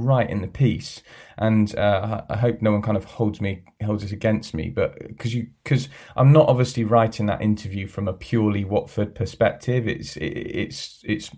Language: English